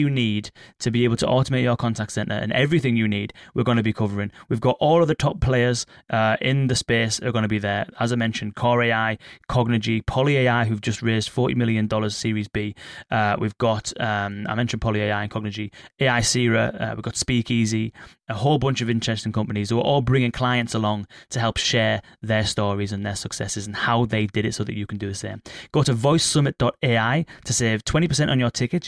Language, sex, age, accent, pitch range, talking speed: English, male, 20-39, British, 110-125 Hz, 220 wpm